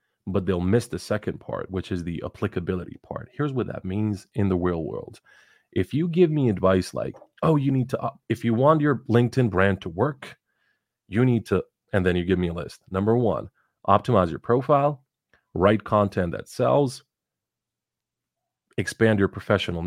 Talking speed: 180 wpm